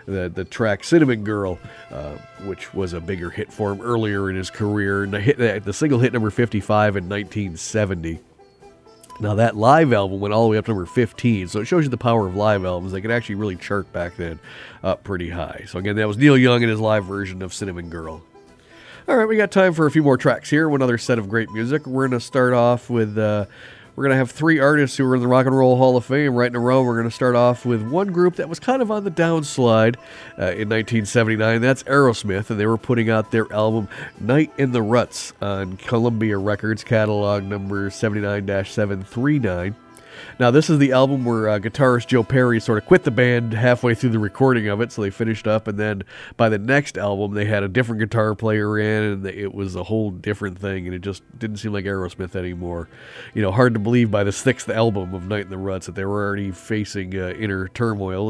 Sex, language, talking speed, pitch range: male, English, 235 wpm, 100-125 Hz